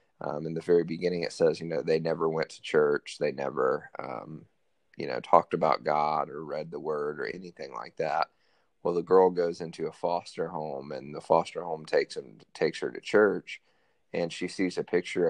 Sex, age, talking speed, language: male, 30-49, 210 wpm, English